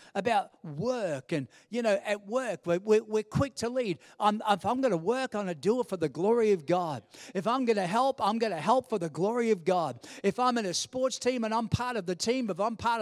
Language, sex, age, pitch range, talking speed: English, male, 50-69, 205-260 Hz, 255 wpm